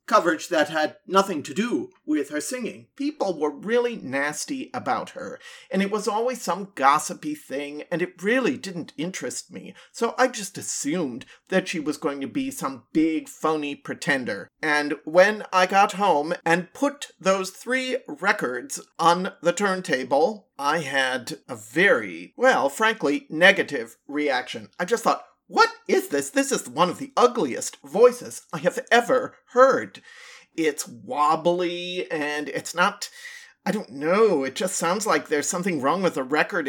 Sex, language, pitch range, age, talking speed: male, English, 155-255 Hz, 40-59, 160 wpm